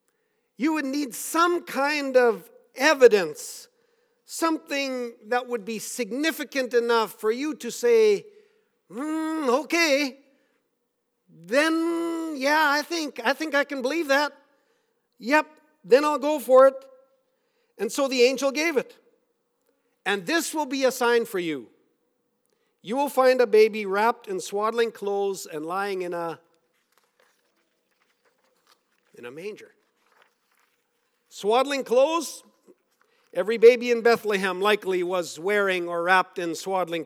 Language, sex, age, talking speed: English, male, 50-69, 125 wpm